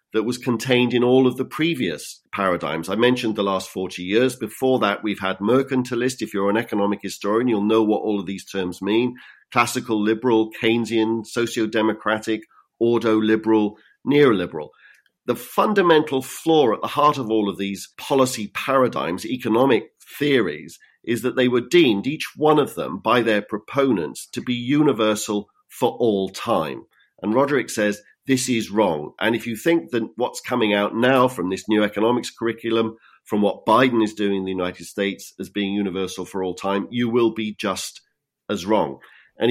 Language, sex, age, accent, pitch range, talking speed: English, male, 40-59, British, 105-125 Hz, 175 wpm